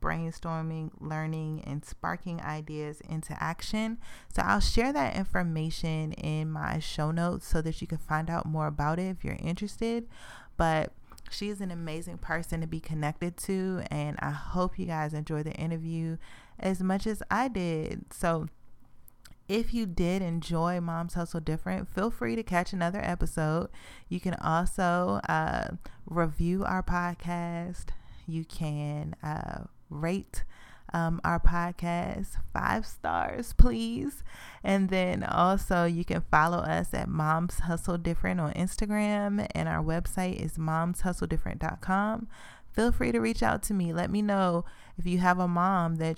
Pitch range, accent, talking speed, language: 160-190 Hz, American, 150 wpm, English